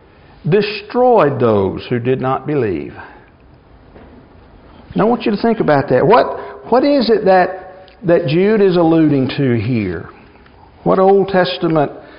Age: 60-79